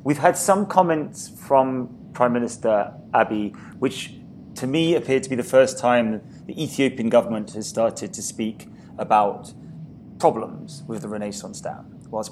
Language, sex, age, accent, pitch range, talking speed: English, male, 30-49, British, 105-125 Hz, 150 wpm